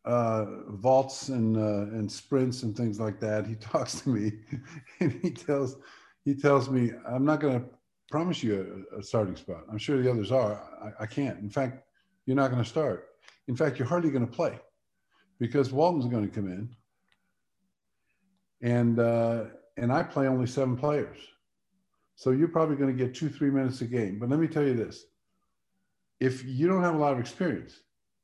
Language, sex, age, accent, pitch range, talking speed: English, male, 50-69, American, 110-140 Hz, 185 wpm